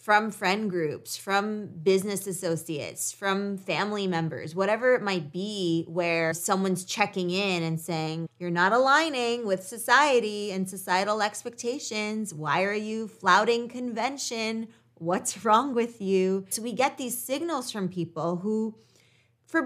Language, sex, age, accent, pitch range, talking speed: English, female, 20-39, American, 175-225 Hz, 135 wpm